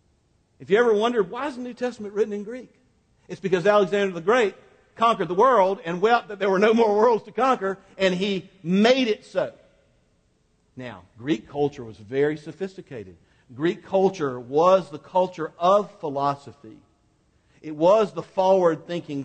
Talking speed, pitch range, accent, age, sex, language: 160 wpm, 165-215 Hz, American, 50-69, male, English